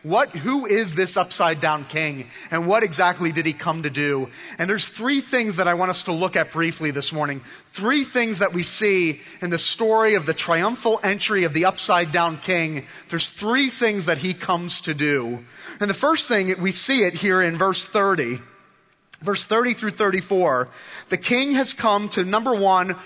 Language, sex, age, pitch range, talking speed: English, male, 30-49, 165-220 Hz, 190 wpm